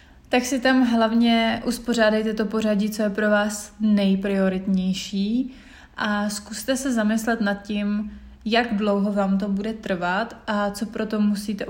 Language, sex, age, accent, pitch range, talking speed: Czech, female, 20-39, native, 205-230 Hz, 150 wpm